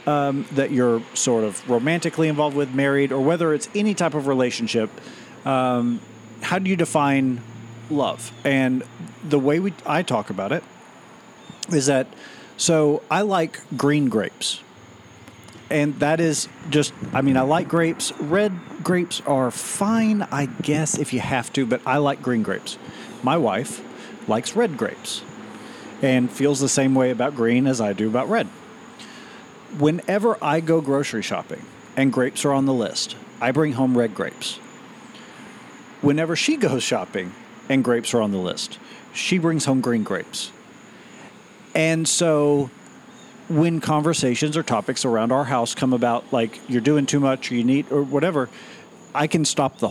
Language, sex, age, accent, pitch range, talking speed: English, male, 40-59, American, 130-175 Hz, 160 wpm